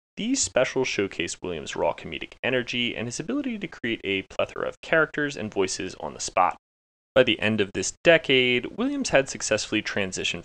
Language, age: English, 30-49